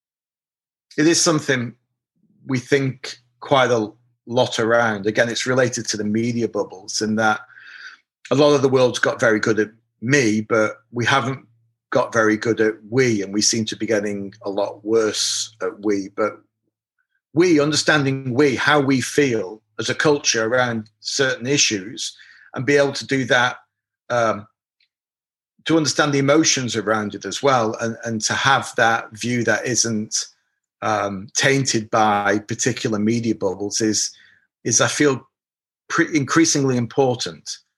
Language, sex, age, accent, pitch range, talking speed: English, male, 40-59, British, 110-130 Hz, 150 wpm